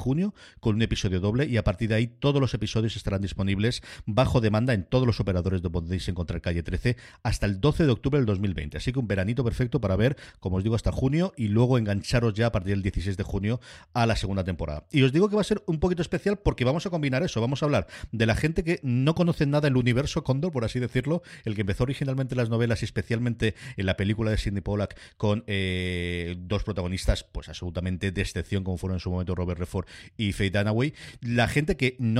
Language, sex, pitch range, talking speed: Spanish, male, 100-130 Hz, 235 wpm